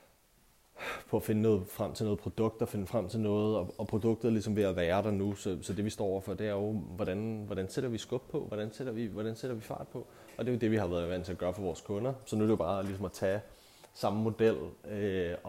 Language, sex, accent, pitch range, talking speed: Danish, male, native, 95-115 Hz, 280 wpm